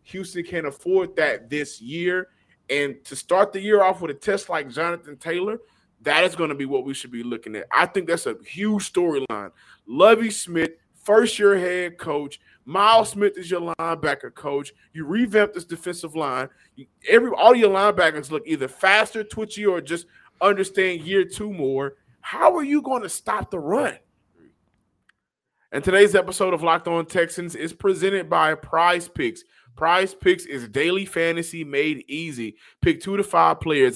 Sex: male